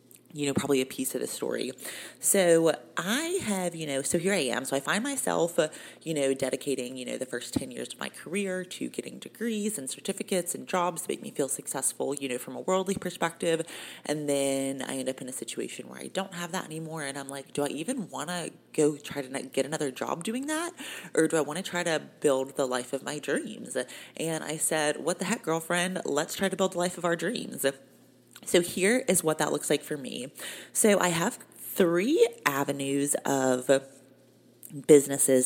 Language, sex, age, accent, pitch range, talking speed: English, female, 30-49, American, 135-185 Hz, 215 wpm